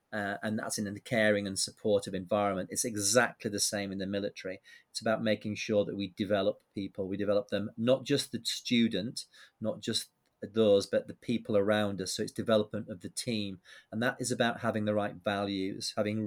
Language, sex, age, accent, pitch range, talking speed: English, male, 30-49, British, 105-115 Hz, 200 wpm